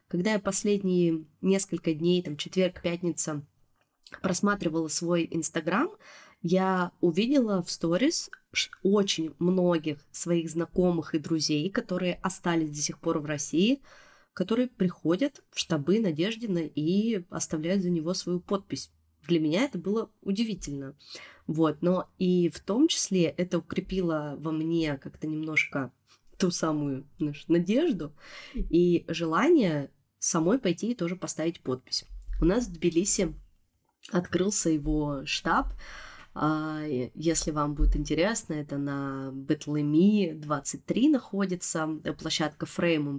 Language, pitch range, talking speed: Russian, 155-190 Hz, 115 wpm